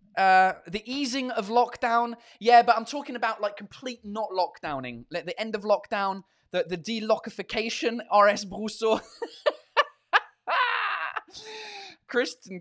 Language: English